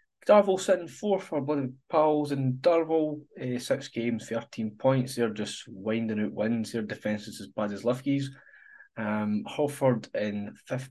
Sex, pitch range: male, 110-145 Hz